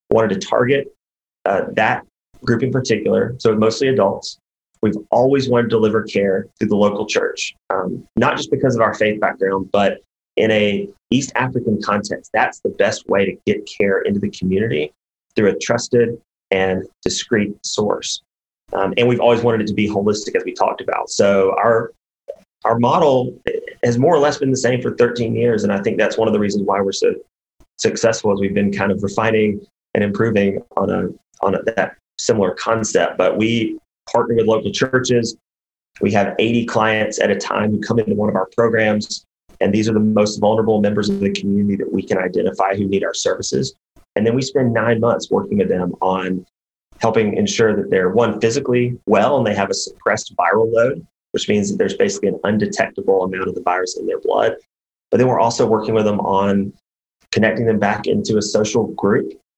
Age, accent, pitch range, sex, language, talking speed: 30-49, American, 100-120 Hz, male, English, 195 wpm